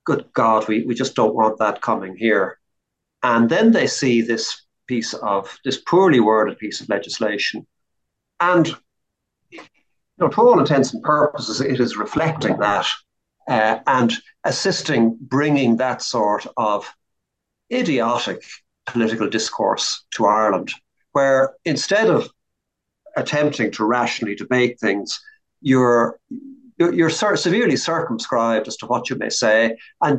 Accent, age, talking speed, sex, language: Irish, 50-69, 130 wpm, male, English